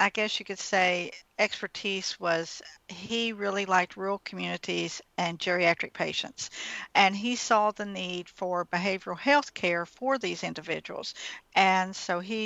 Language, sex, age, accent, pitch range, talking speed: English, female, 50-69, American, 180-205 Hz, 145 wpm